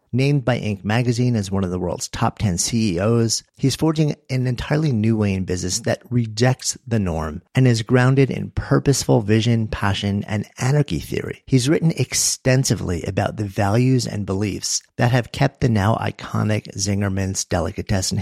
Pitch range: 100-130 Hz